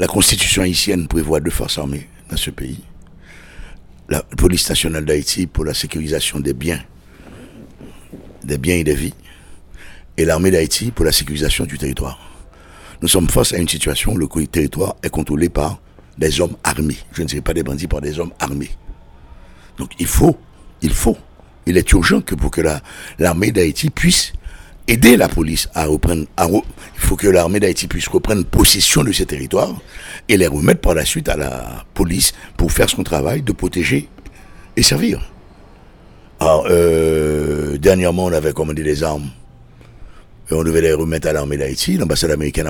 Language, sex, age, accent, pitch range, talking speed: French, male, 60-79, French, 70-85 Hz, 175 wpm